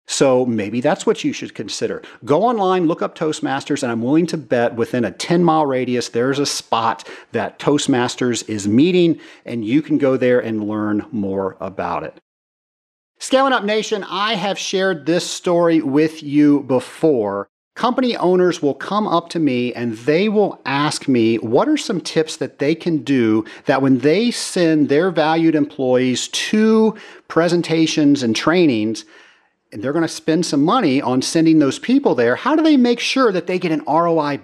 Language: English